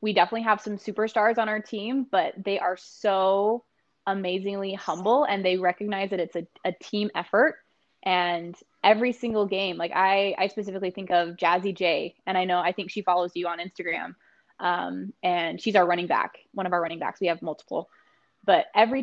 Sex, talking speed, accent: female, 190 wpm, American